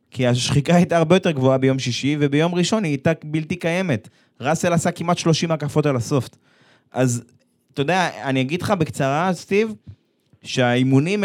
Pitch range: 125-170 Hz